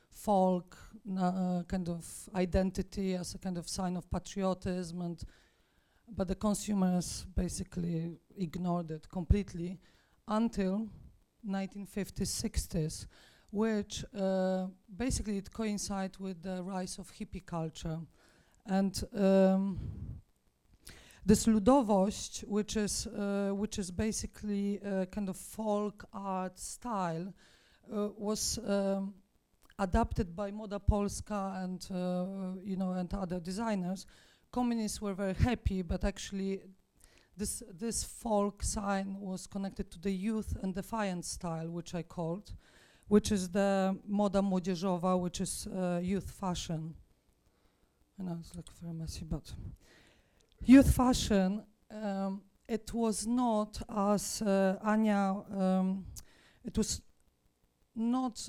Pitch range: 185-210 Hz